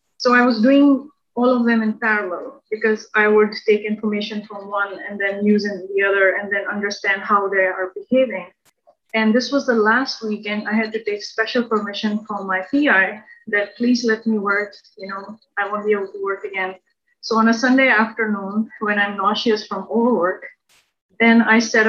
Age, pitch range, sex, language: 20-39, 200-245 Hz, female, English